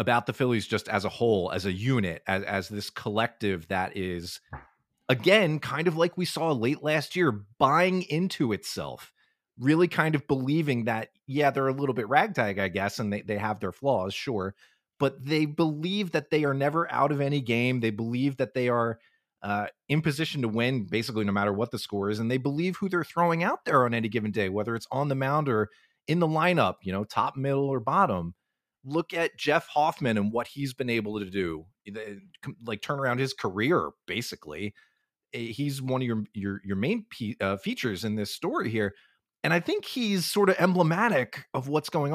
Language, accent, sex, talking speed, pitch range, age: English, American, male, 205 wpm, 105-150 Hz, 30-49